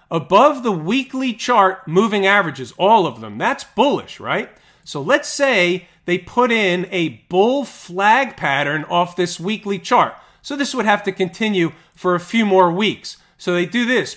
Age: 40-59